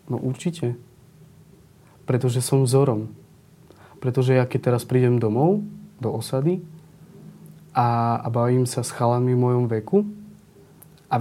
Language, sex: Slovak, male